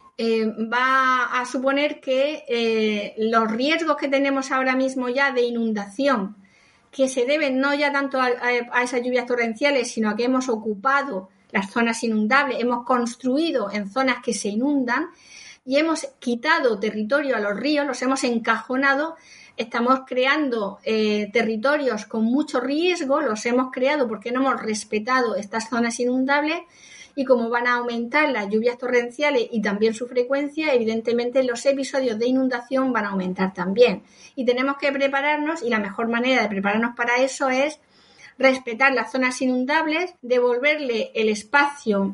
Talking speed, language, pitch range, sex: 155 wpm, Spanish, 235-275 Hz, female